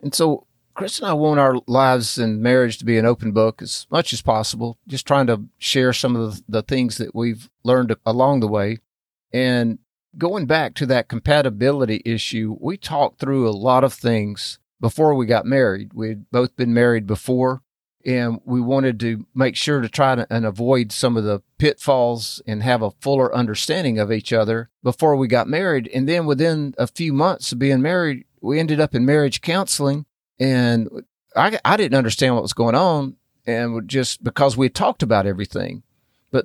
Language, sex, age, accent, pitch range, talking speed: English, male, 40-59, American, 115-145 Hz, 190 wpm